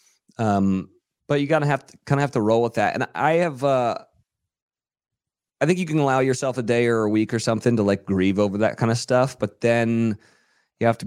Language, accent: English, American